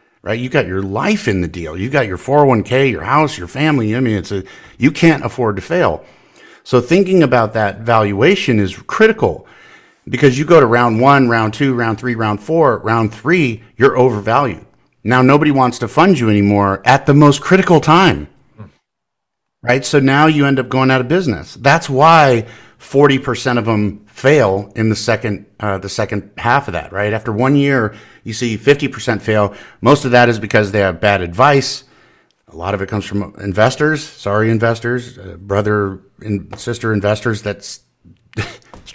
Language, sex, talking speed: English, male, 180 wpm